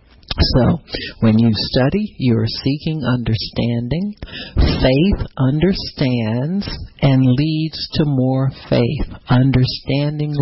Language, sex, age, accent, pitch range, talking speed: English, male, 50-69, American, 120-155 Hz, 85 wpm